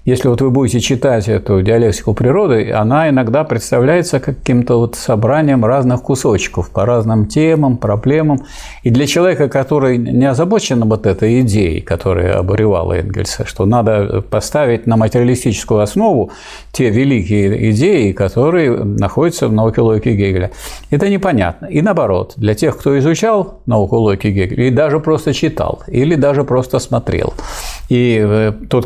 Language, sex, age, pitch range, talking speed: Russian, male, 50-69, 105-140 Hz, 140 wpm